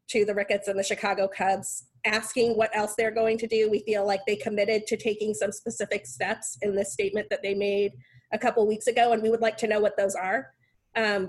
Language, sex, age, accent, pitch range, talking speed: English, female, 30-49, American, 200-235 Hz, 235 wpm